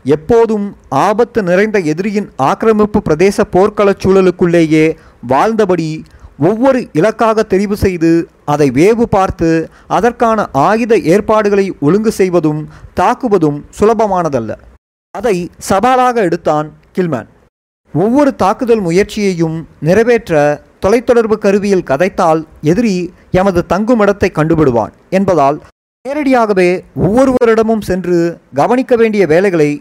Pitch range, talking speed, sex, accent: 155-210 Hz, 90 wpm, male, native